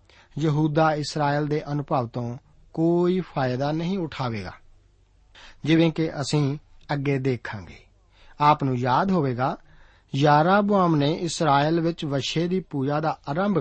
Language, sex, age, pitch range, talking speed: Punjabi, male, 50-69, 130-165 Hz, 115 wpm